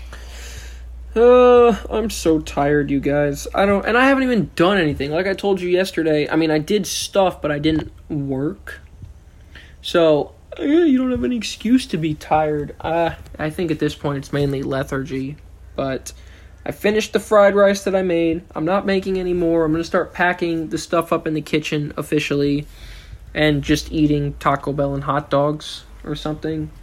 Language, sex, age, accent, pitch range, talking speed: English, male, 20-39, American, 140-165 Hz, 185 wpm